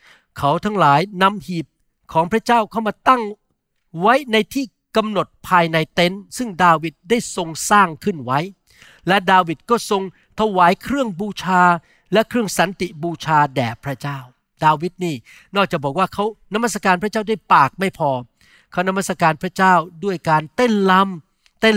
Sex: male